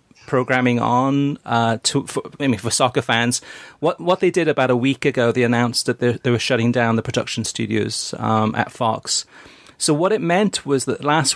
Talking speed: 200 wpm